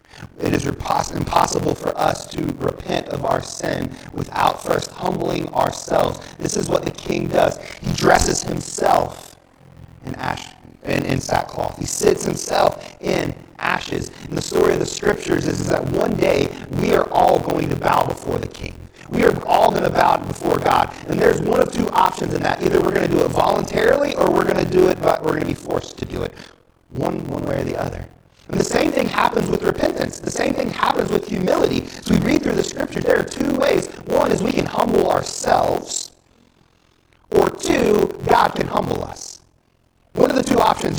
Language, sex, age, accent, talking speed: English, male, 40-59, American, 200 wpm